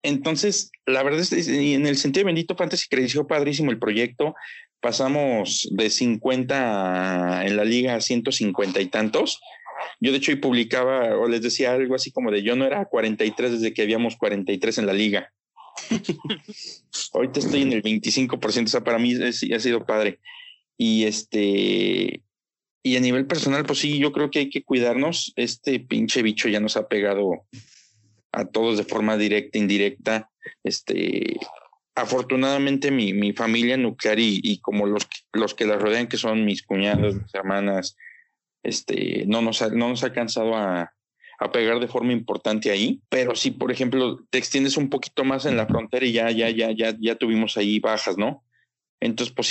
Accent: Mexican